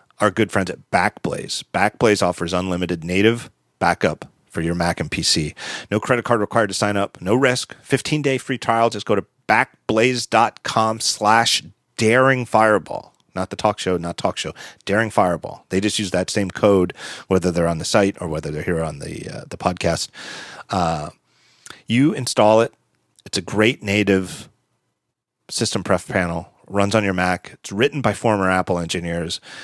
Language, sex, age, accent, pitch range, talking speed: English, male, 40-59, American, 90-110 Hz, 180 wpm